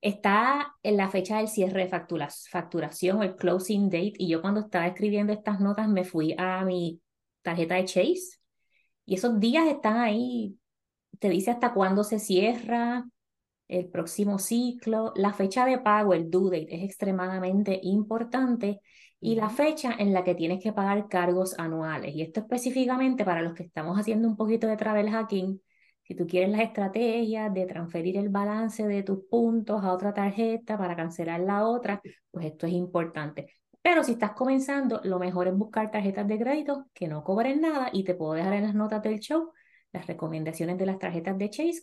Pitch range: 180-225 Hz